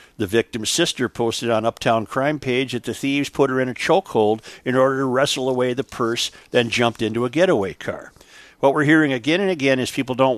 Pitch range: 105-130 Hz